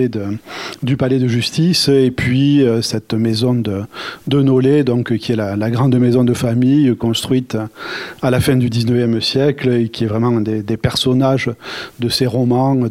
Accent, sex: French, male